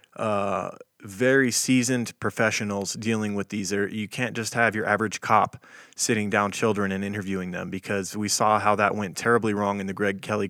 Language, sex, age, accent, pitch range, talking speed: English, male, 20-39, American, 100-115 Hz, 190 wpm